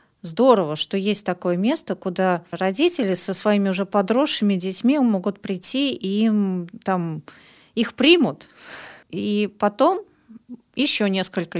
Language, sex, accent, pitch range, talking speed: Russian, female, native, 175-210 Hz, 120 wpm